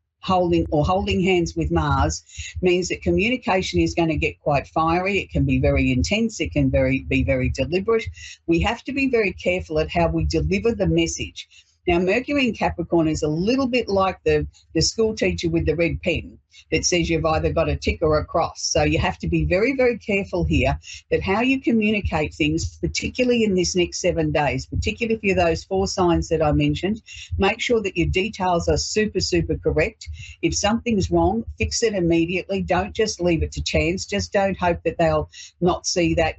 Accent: Australian